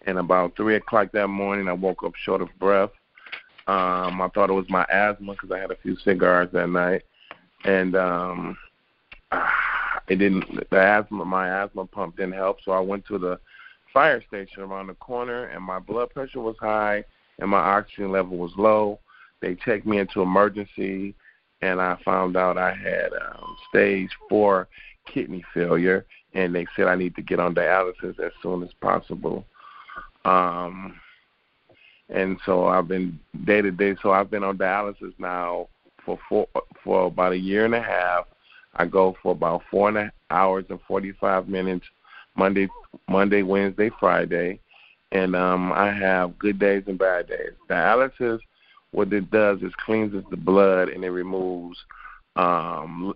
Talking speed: 165 wpm